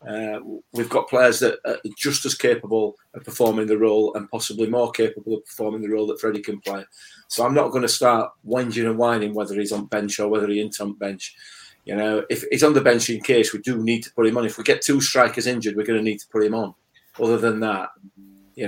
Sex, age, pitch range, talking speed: male, 30-49, 105-125 Hz, 255 wpm